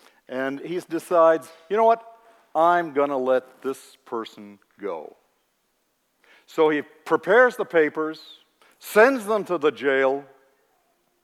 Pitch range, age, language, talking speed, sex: 145-195 Hz, 60-79, English, 125 wpm, male